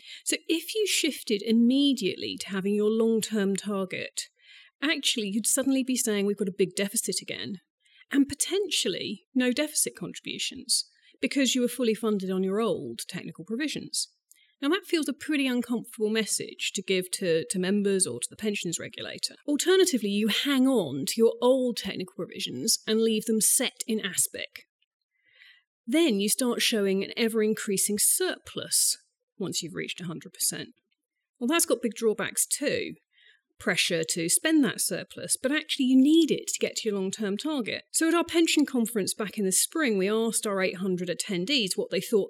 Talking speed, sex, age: 170 wpm, female, 30-49